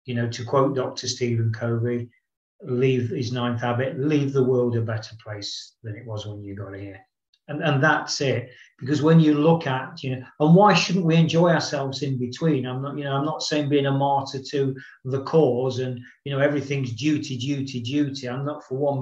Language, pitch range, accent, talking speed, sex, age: English, 125-160 Hz, British, 210 wpm, male, 40-59